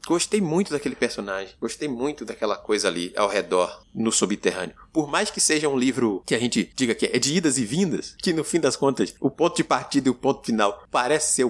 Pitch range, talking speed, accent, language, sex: 135-205 Hz, 230 wpm, Brazilian, Portuguese, male